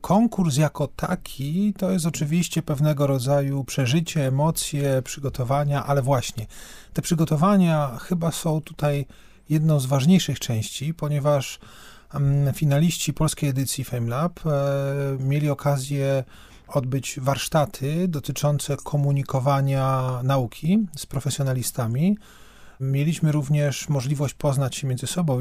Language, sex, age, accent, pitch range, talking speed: Polish, male, 40-59, native, 130-155 Hz, 100 wpm